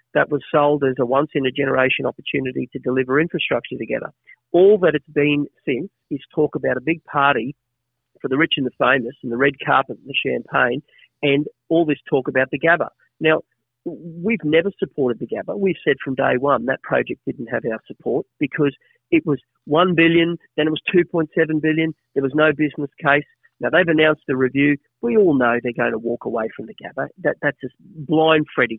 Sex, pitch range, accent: male, 135-160 Hz, Australian